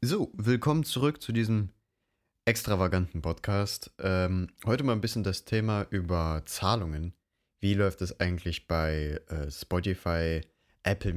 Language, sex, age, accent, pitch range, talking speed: German, male, 30-49, German, 90-110 Hz, 130 wpm